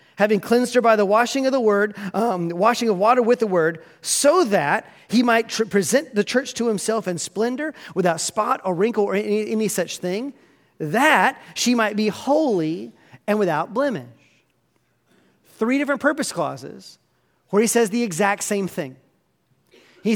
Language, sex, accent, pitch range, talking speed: English, male, American, 190-255 Hz, 170 wpm